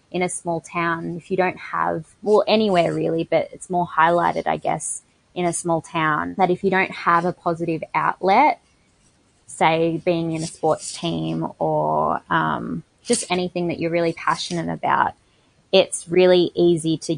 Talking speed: 170 wpm